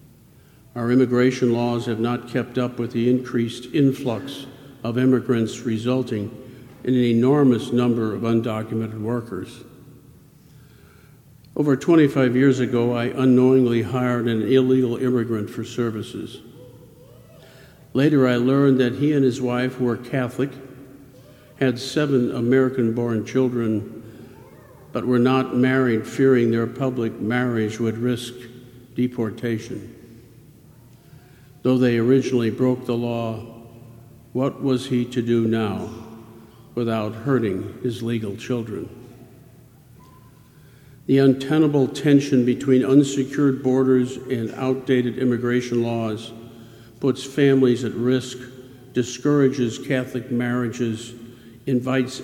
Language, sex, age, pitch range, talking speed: English, male, 50-69, 120-130 Hz, 105 wpm